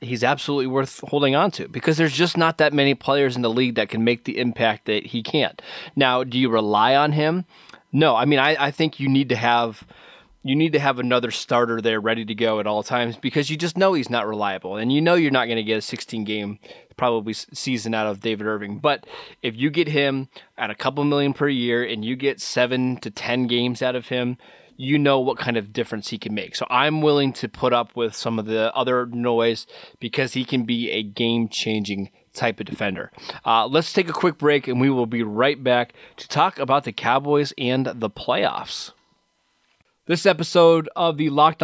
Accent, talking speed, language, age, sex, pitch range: American, 220 wpm, English, 20-39, male, 120-145 Hz